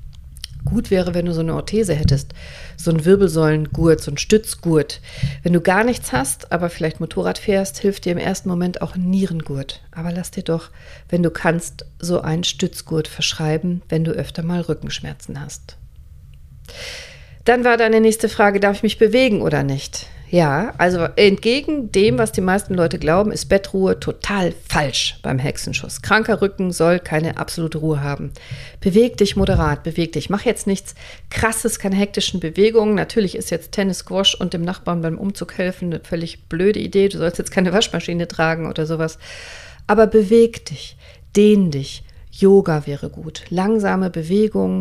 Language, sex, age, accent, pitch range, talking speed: German, female, 50-69, German, 160-200 Hz, 170 wpm